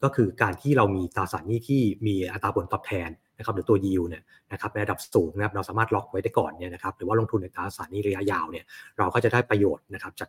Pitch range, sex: 100-120 Hz, male